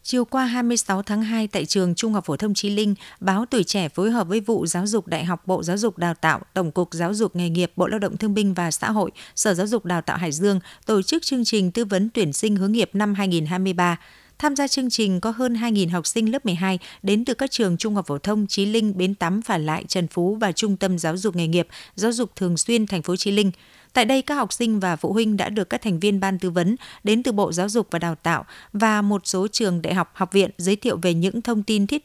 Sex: female